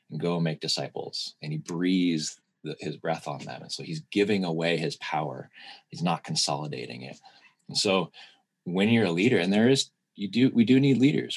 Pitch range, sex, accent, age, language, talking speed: 80-100 Hz, male, American, 30-49, English, 200 wpm